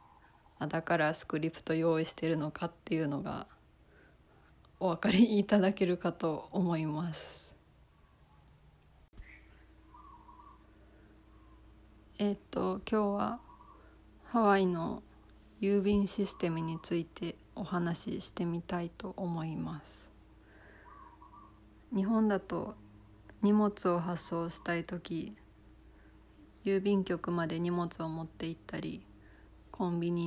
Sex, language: female, Japanese